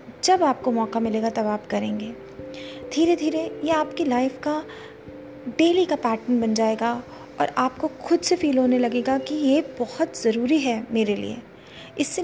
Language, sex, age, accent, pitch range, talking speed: Hindi, female, 30-49, native, 230-300 Hz, 160 wpm